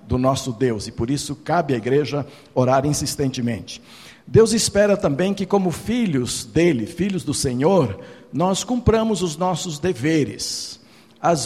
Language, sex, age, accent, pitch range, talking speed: Portuguese, male, 60-79, Brazilian, 145-195 Hz, 140 wpm